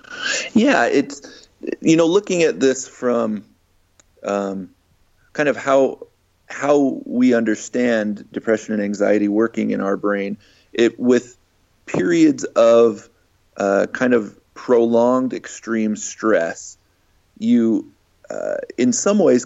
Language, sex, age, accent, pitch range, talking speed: English, male, 30-49, American, 105-125 Hz, 115 wpm